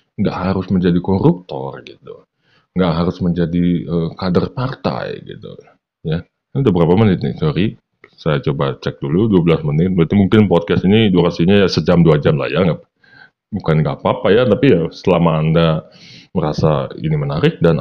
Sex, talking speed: male, 150 wpm